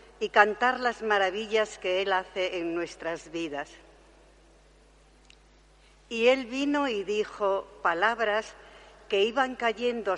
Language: Spanish